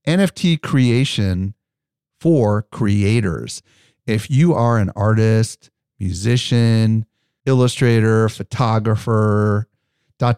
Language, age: English, 40-59